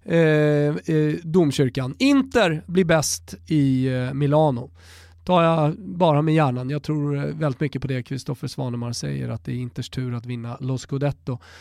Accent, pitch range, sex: native, 150-190 Hz, male